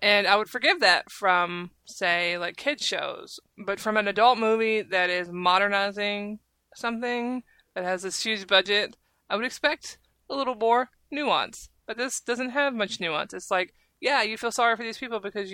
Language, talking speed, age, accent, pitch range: English, 180 wpm, 20-39, American, 190-235 Hz